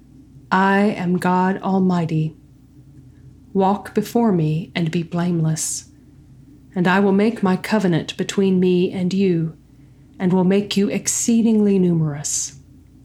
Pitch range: 140-190 Hz